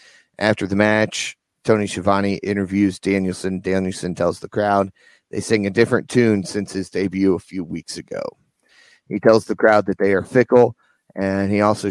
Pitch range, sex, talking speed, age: 95-110 Hz, male, 170 wpm, 30-49